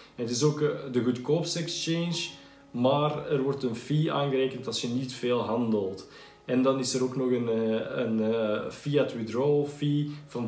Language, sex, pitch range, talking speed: Dutch, male, 115-140 Hz, 160 wpm